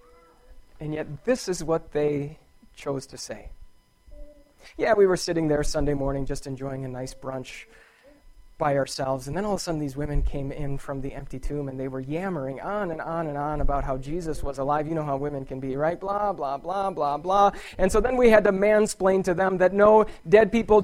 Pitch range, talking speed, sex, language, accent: 145-205 Hz, 220 wpm, male, English, American